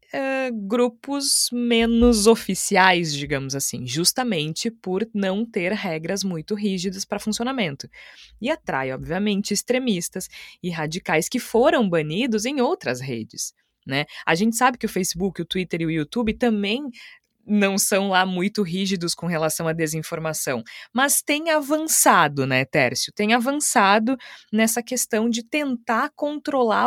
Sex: female